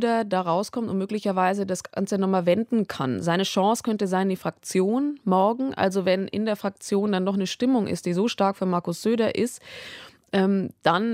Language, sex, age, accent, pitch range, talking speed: German, female, 20-39, German, 175-205 Hz, 190 wpm